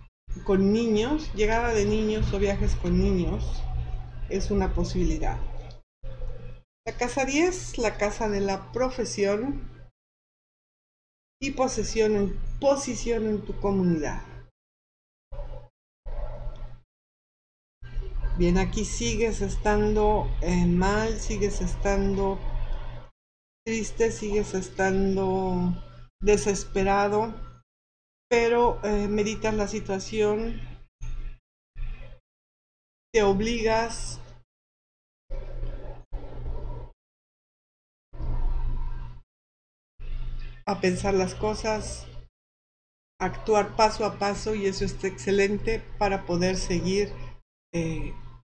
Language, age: Spanish, 50-69